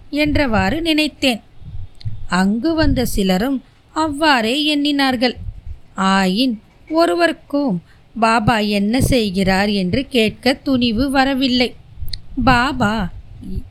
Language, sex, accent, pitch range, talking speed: Tamil, female, native, 190-270 Hz, 75 wpm